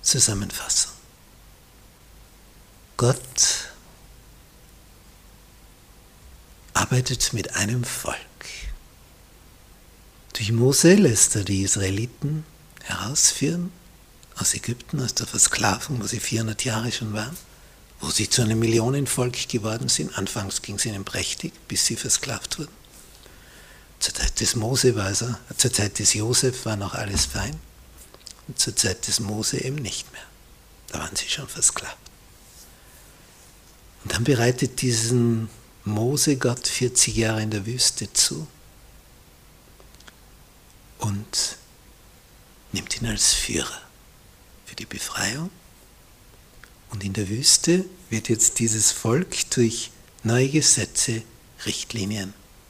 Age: 60-79